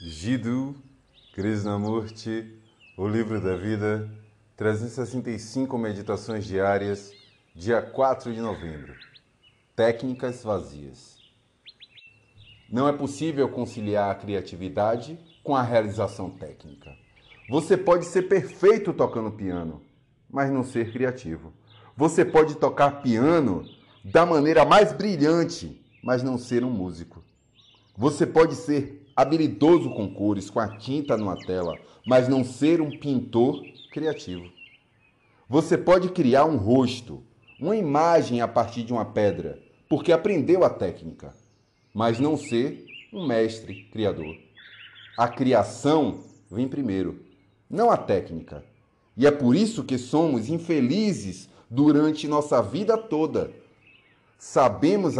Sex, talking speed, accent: male, 115 wpm, Brazilian